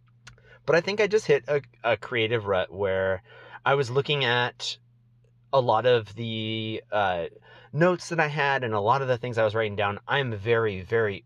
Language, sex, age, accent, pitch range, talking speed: English, male, 30-49, American, 100-125 Hz, 195 wpm